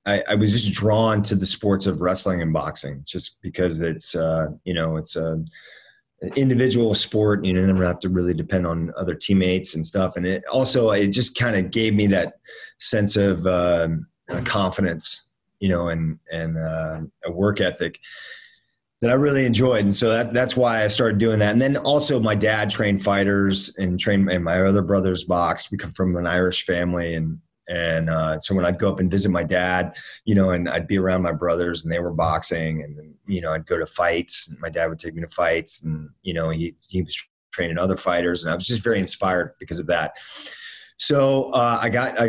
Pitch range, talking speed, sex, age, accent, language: 85-110 Hz, 215 wpm, male, 30-49, American, English